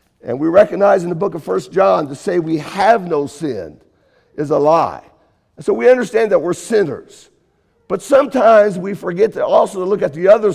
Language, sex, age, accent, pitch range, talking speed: English, male, 50-69, American, 180-235 Hz, 200 wpm